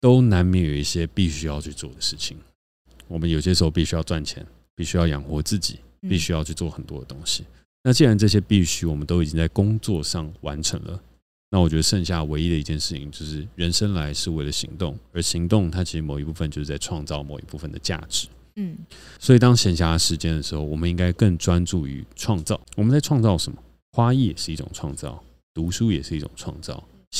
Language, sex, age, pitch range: Chinese, male, 30-49, 75-95 Hz